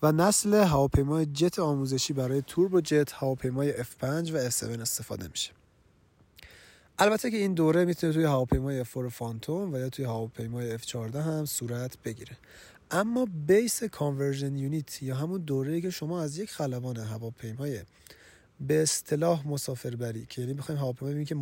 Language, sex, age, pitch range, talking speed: Persian, male, 30-49, 120-155 Hz, 160 wpm